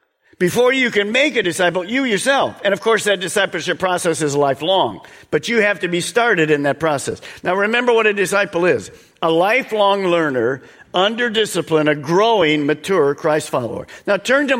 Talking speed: 180 wpm